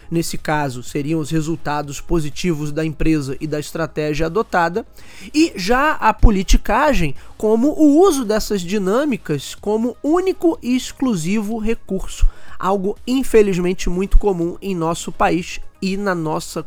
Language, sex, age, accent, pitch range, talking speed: Portuguese, male, 20-39, Brazilian, 160-215 Hz, 130 wpm